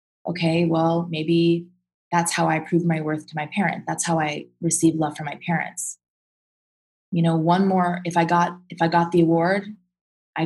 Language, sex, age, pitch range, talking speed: English, female, 20-39, 160-180 Hz, 190 wpm